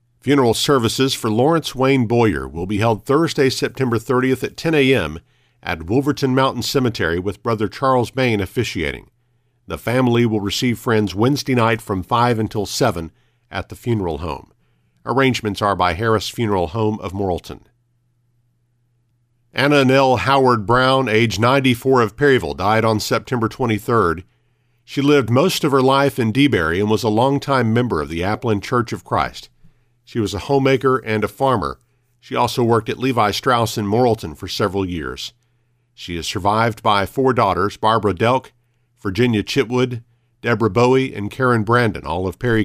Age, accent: 50-69, American